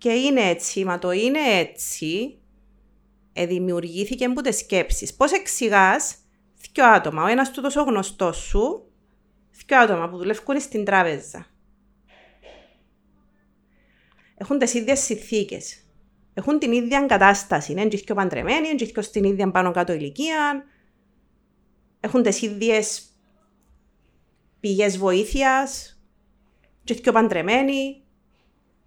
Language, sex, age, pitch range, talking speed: Greek, female, 30-49, 195-250 Hz, 100 wpm